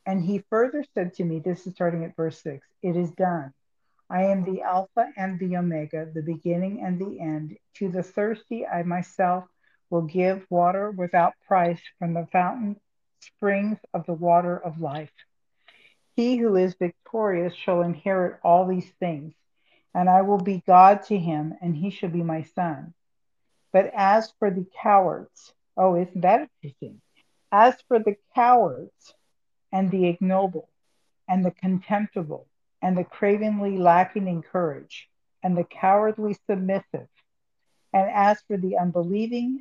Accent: American